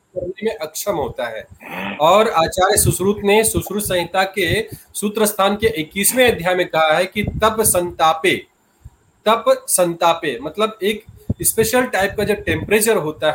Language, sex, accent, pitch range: Hindi, male, native, 165-210 Hz